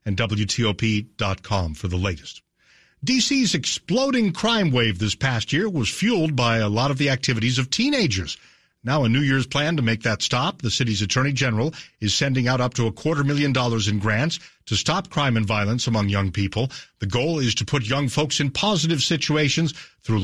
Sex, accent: male, American